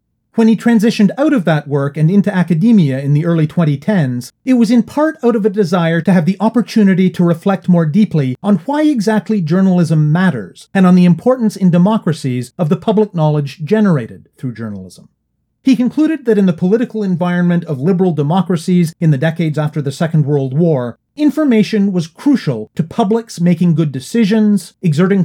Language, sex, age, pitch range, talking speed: English, male, 40-59, 145-210 Hz, 180 wpm